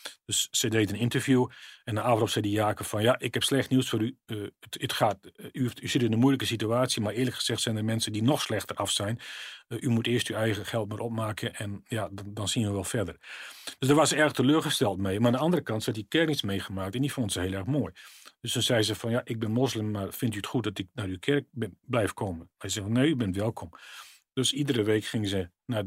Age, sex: 40-59, male